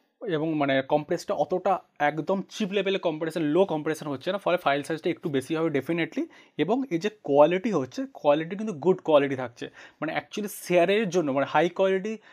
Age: 30-49